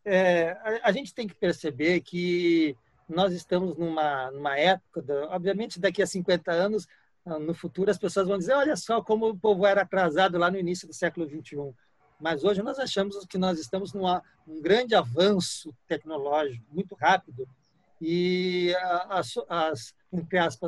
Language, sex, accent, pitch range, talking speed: Portuguese, male, Brazilian, 170-205 Hz, 160 wpm